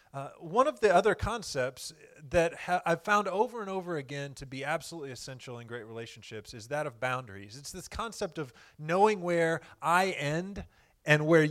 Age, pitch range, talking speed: 30-49, 140-180 Hz, 180 wpm